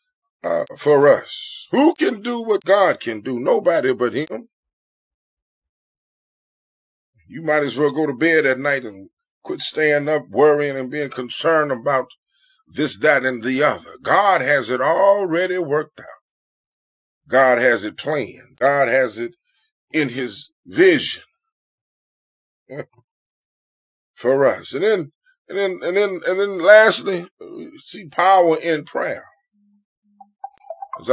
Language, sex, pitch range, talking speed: English, male, 145-205 Hz, 130 wpm